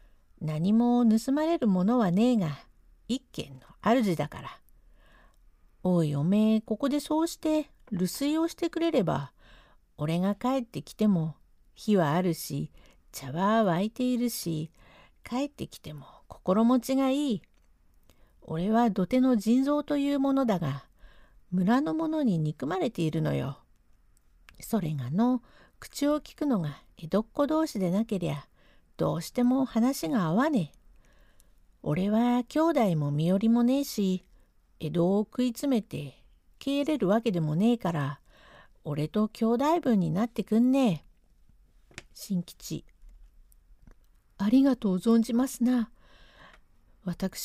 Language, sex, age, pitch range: Japanese, female, 60-79, 170-250 Hz